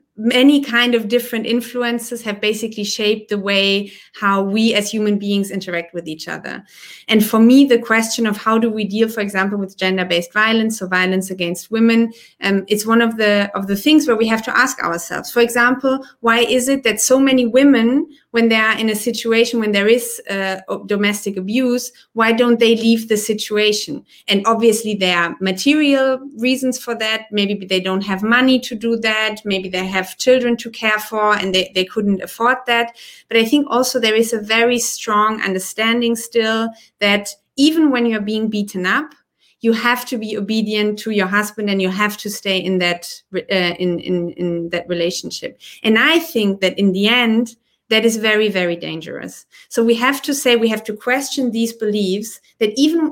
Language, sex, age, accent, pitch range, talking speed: Polish, female, 30-49, German, 205-235 Hz, 195 wpm